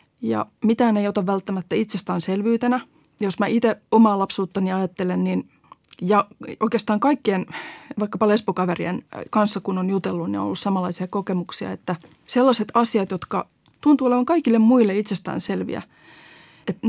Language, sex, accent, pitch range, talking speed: Finnish, female, native, 185-230 Hz, 130 wpm